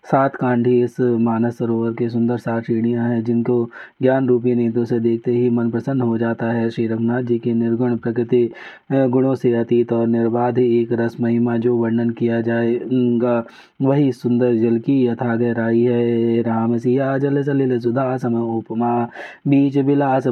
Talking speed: 160 wpm